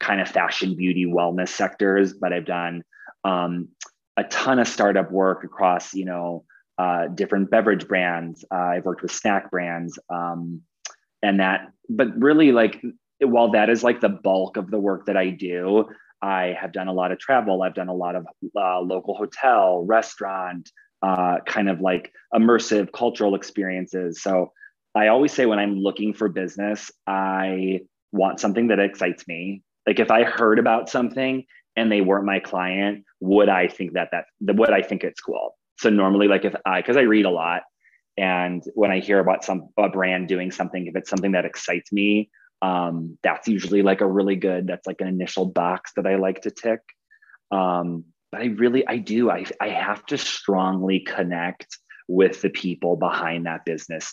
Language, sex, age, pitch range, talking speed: English, male, 20-39, 90-100 Hz, 185 wpm